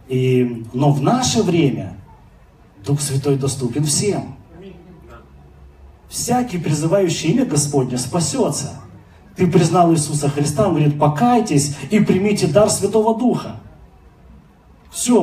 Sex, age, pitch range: male, 30-49, 145-215 Hz